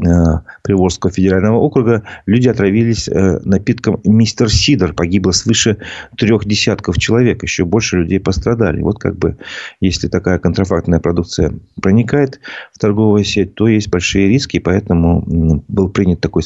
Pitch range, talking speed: 90-110 Hz, 130 wpm